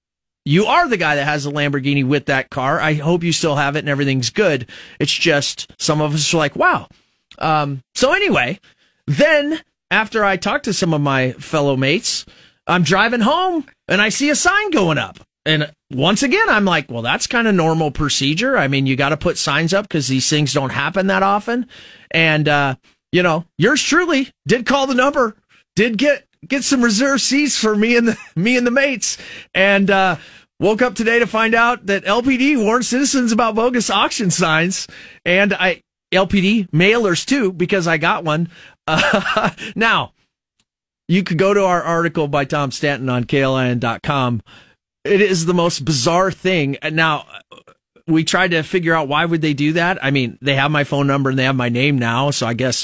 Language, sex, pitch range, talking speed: English, male, 145-215 Hz, 195 wpm